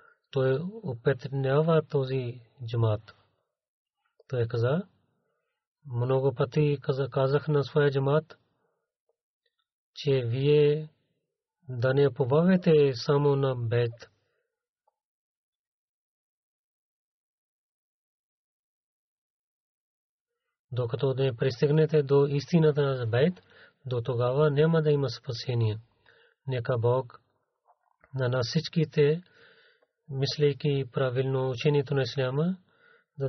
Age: 40-59